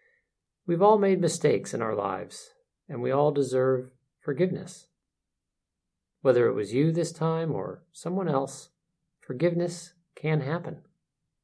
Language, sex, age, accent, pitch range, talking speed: English, male, 50-69, American, 135-175 Hz, 125 wpm